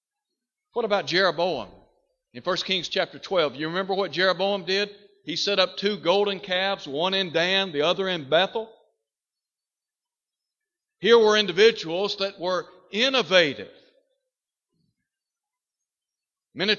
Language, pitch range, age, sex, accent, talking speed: English, 160-215 Hz, 60-79, male, American, 120 wpm